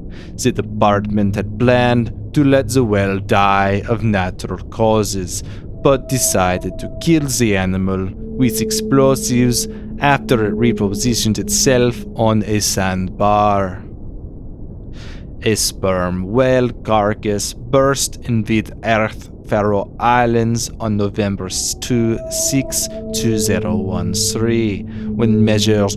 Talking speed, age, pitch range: 100 wpm, 30-49, 100-120 Hz